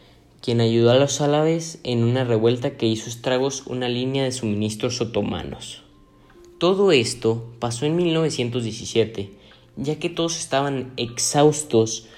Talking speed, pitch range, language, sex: 130 wpm, 110-135 Hz, Spanish, male